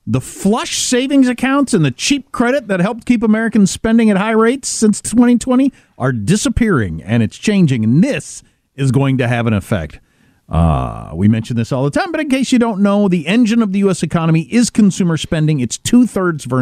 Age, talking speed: 50-69, 205 wpm